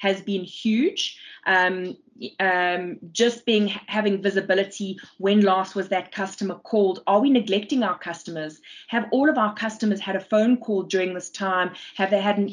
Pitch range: 175-210 Hz